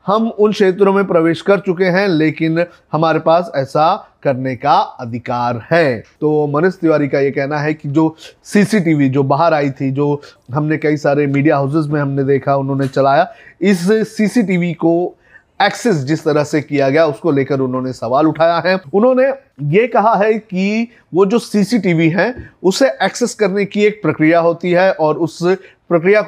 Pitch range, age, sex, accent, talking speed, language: 145-195 Hz, 30-49, male, native, 175 wpm, Hindi